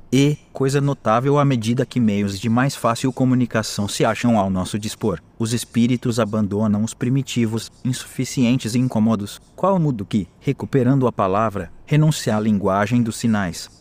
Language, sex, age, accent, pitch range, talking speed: Portuguese, male, 30-49, Brazilian, 105-125 Hz, 150 wpm